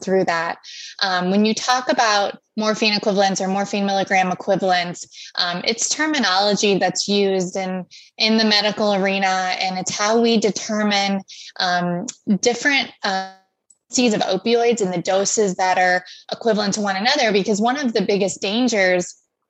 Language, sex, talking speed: English, female, 150 wpm